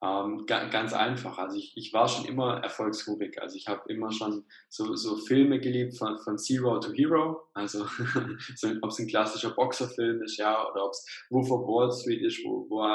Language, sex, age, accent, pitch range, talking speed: German, male, 10-29, German, 110-160 Hz, 205 wpm